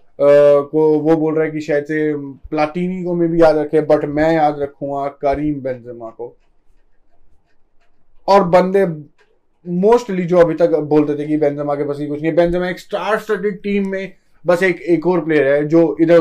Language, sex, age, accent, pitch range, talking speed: Hindi, male, 20-39, native, 140-175 Hz, 190 wpm